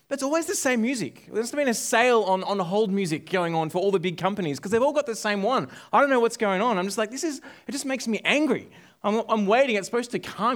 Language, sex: English, male